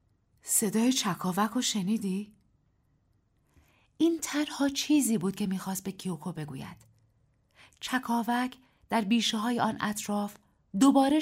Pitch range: 170-250 Hz